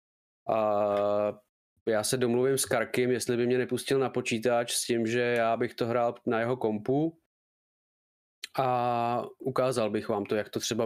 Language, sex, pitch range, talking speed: Czech, male, 110-130 Hz, 165 wpm